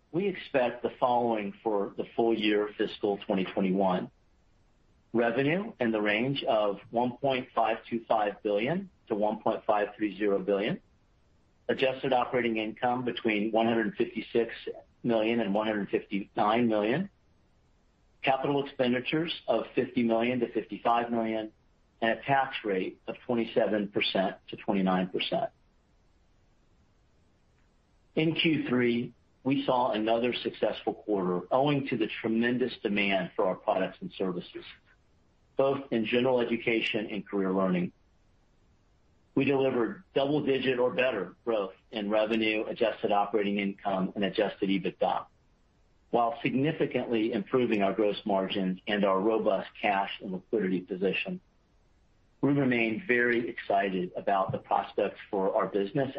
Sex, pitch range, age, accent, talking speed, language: male, 100-125 Hz, 50-69, American, 115 wpm, English